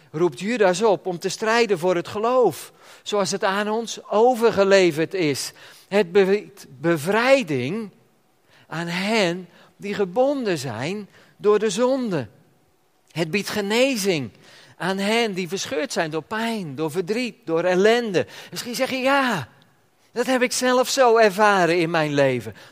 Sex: male